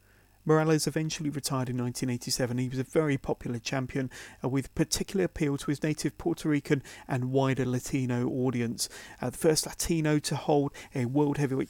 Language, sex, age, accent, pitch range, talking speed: English, male, 30-49, British, 125-155 Hz, 170 wpm